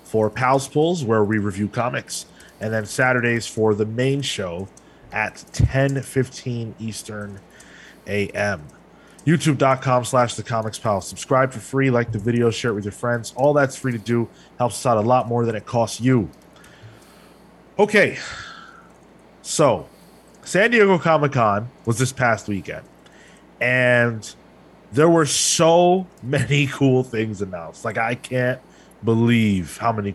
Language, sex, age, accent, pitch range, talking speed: English, male, 20-39, American, 105-135 Hz, 145 wpm